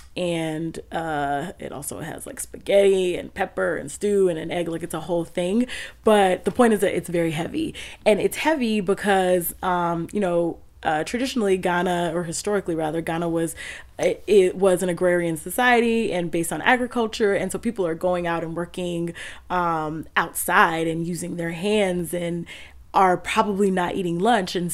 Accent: American